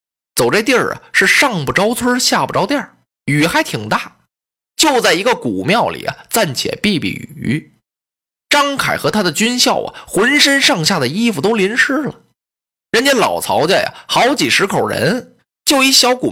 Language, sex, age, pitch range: Chinese, male, 20-39, 190-270 Hz